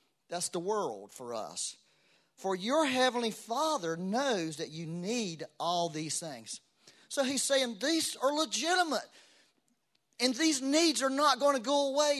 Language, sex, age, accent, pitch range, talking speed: English, male, 40-59, American, 185-275 Hz, 150 wpm